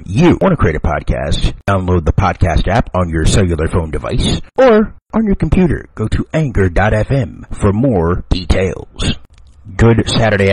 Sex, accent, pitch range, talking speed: male, American, 85-130 Hz, 155 wpm